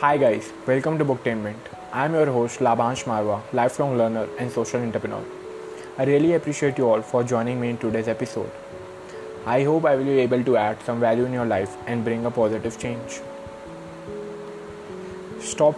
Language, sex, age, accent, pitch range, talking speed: English, male, 20-39, Indian, 110-140 Hz, 175 wpm